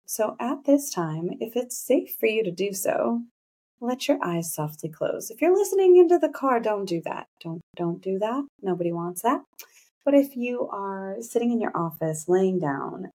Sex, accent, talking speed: female, American, 195 wpm